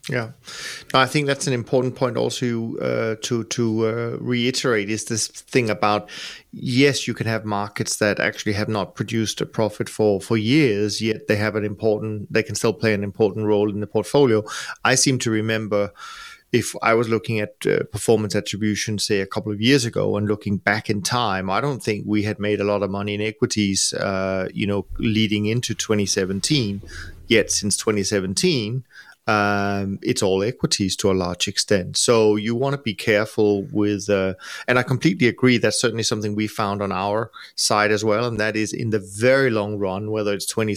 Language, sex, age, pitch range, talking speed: English, male, 30-49, 100-120 Hz, 195 wpm